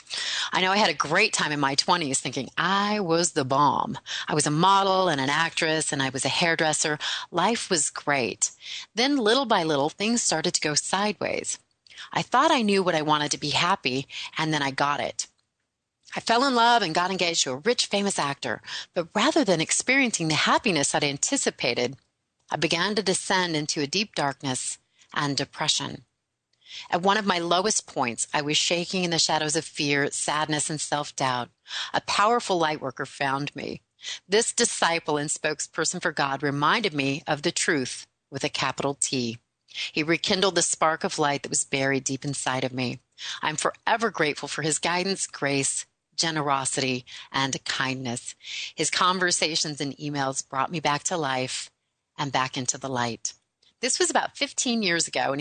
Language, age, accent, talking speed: English, 30-49, American, 180 wpm